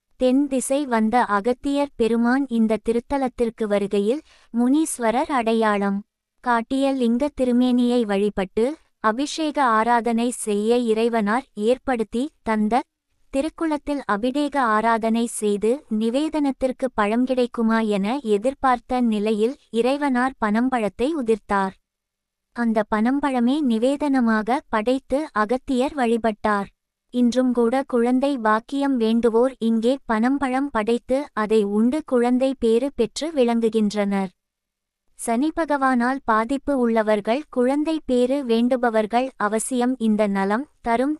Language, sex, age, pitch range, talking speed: Tamil, female, 20-39, 220-265 Hz, 95 wpm